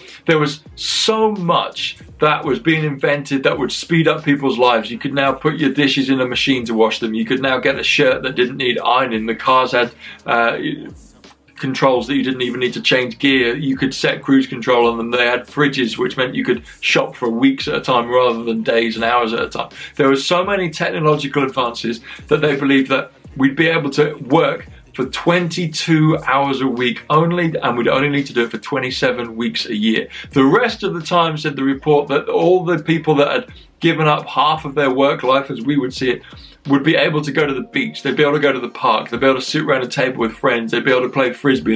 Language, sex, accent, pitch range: English, male, British, 125-150 Hz